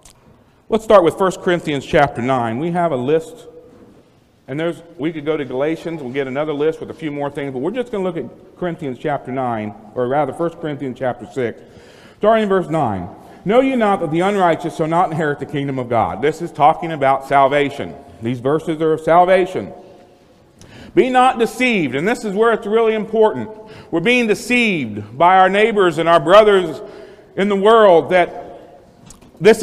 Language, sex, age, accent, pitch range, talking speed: English, male, 40-59, American, 165-245 Hz, 190 wpm